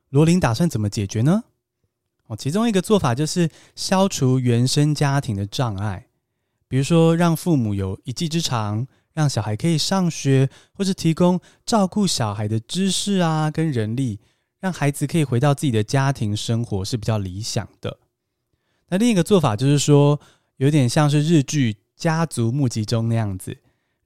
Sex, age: male, 20-39